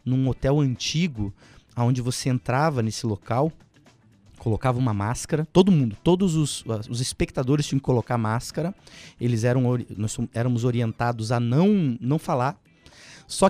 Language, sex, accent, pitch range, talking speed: Portuguese, male, Brazilian, 125-170 Hz, 140 wpm